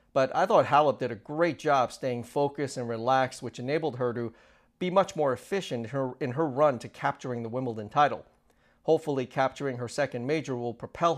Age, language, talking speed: 40-59, English, 195 wpm